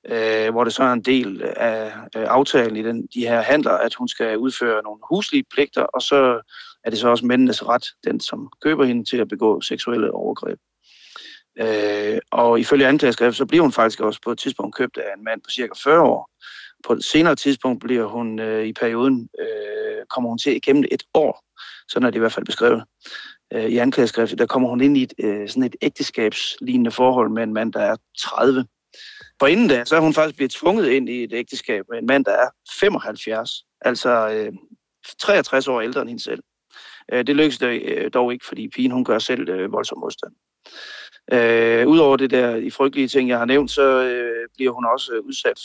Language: Danish